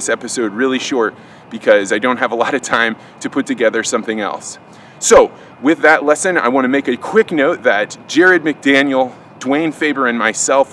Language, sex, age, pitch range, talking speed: English, male, 20-39, 120-155 Hz, 190 wpm